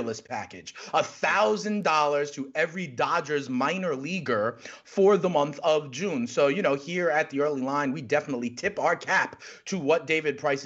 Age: 30-49